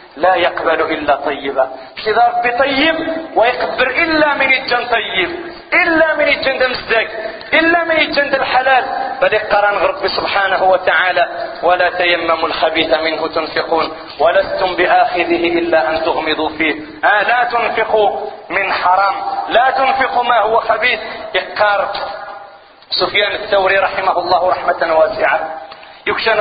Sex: male